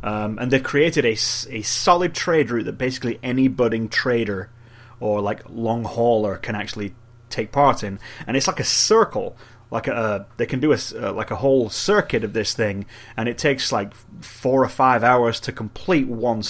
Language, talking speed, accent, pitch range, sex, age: English, 190 wpm, British, 110-130 Hz, male, 30-49